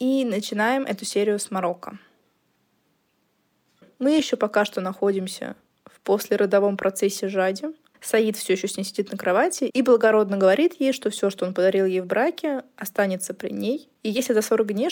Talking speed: 175 wpm